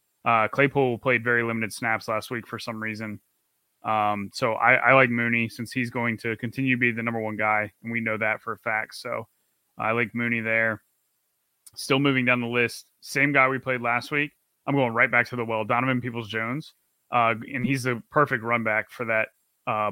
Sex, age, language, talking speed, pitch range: male, 20-39, English, 210 wpm, 110-125 Hz